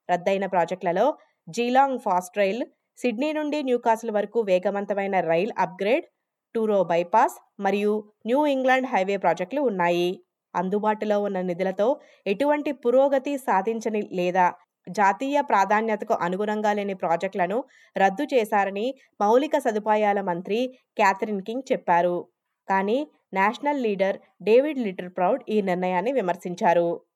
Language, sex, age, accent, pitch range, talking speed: Telugu, female, 20-39, native, 185-245 Hz, 110 wpm